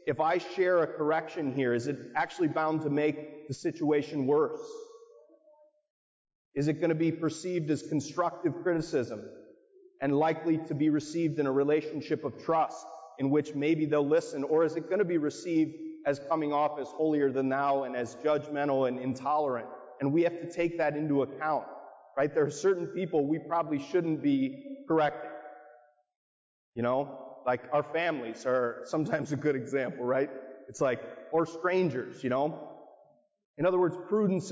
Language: English